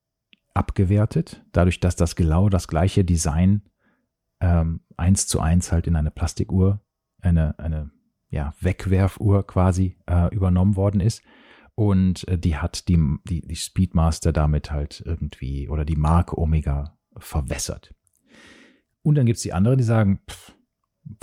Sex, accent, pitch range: male, German, 85-100 Hz